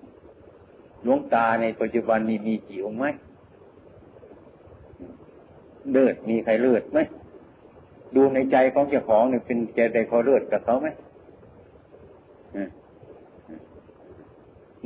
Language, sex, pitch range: Thai, male, 110-130 Hz